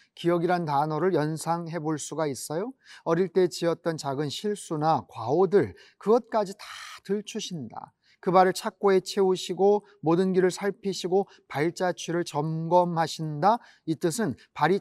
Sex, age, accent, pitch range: male, 30-49, native, 175-225 Hz